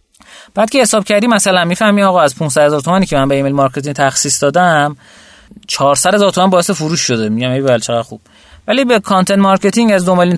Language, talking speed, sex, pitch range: Persian, 185 wpm, male, 140-200 Hz